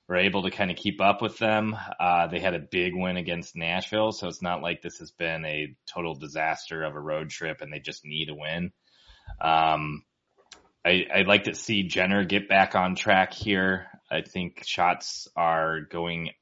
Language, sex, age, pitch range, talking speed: English, male, 20-39, 75-90 Hz, 195 wpm